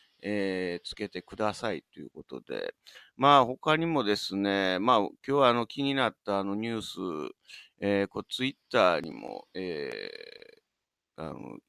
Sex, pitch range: male, 100-145 Hz